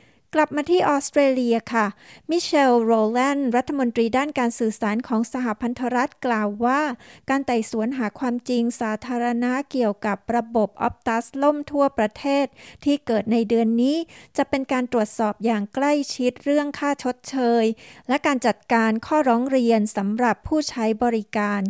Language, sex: Thai, female